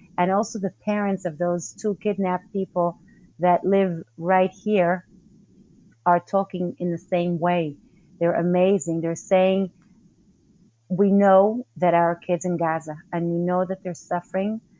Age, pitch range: 30-49, 175-195 Hz